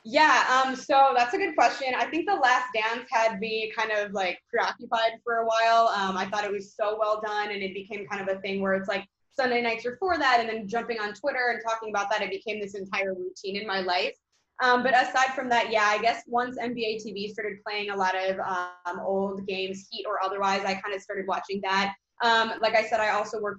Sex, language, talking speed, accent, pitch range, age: female, English, 240 wpm, American, 195-230 Hz, 20-39